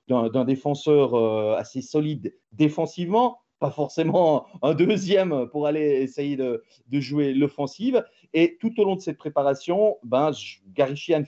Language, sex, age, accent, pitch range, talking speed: French, male, 40-59, French, 130-165 Hz, 145 wpm